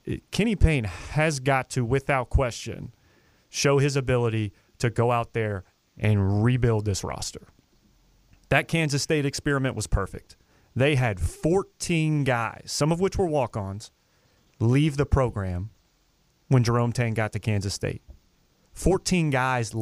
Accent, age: American, 30-49